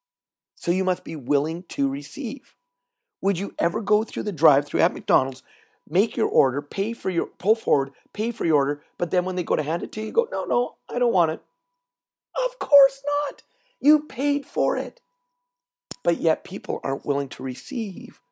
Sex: male